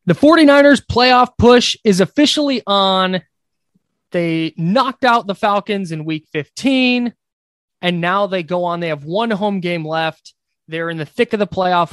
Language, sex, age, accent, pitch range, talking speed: English, male, 20-39, American, 160-235 Hz, 165 wpm